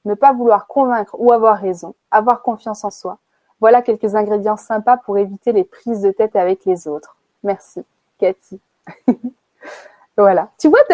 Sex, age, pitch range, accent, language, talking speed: female, 20-39, 205-275 Hz, French, French, 165 wpm